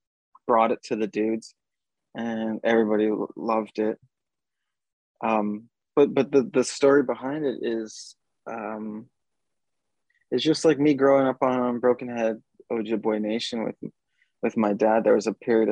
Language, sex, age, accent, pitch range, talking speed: English, male, 20-39, American, 110-125 Hz, 145 wpm